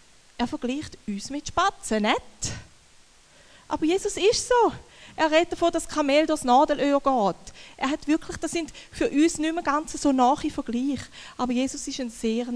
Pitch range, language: 230-270 Hz, German